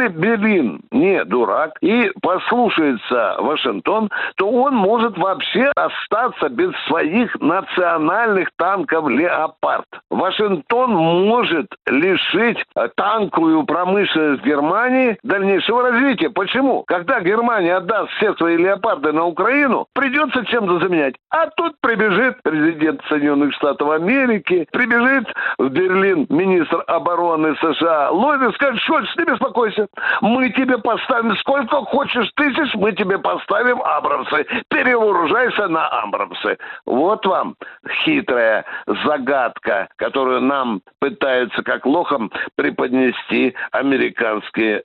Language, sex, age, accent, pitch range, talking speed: Russian, male, 60-79, native, 175-265 Hz, 105 wpm